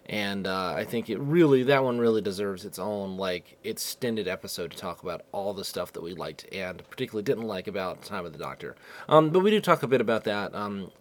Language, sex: English, male